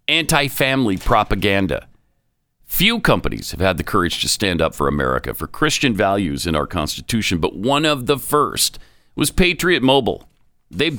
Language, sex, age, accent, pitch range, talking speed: English, male, 50-69, American, 110-160 Hz, 155 wpm